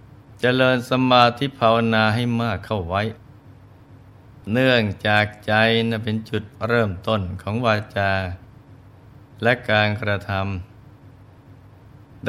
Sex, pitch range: male, 100-120 Hz